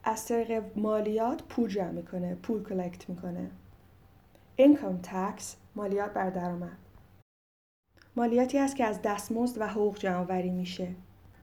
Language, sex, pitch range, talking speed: Persian, female, 175-220 Hz, 115 wpm